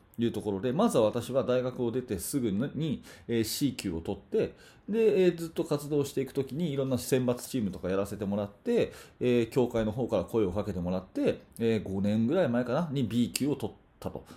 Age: 30-49